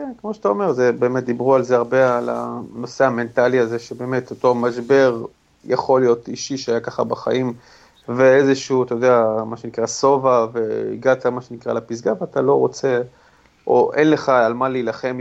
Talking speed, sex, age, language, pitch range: 165 wpm, male, 30-49, Hebrew, 120-140 Hz